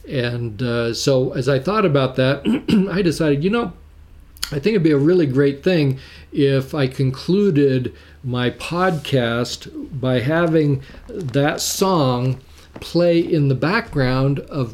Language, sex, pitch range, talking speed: English, male, 130-160 Hz, 140 wpm